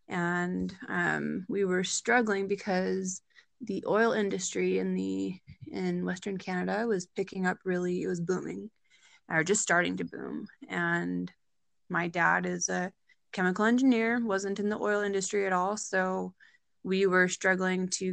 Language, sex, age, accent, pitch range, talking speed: English, female, 20-39, American, 180-215 Hz, 150 wpm